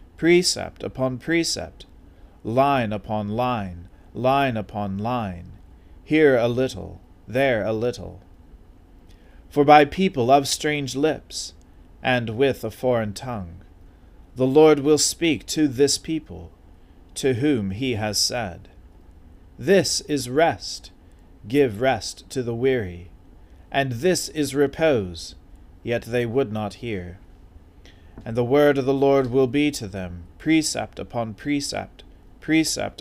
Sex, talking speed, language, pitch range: male, 125 wpm, English, 90-140 Hz